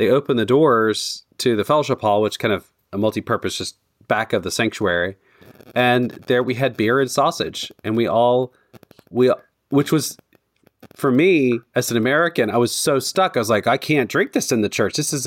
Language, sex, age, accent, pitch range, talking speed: English, male, 30-49, American, 110-135 Hz, 205 wpm